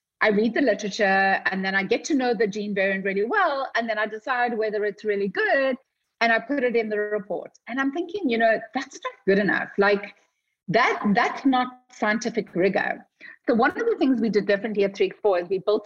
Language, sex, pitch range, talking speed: English, female, 195-245 Hz, 215 wpm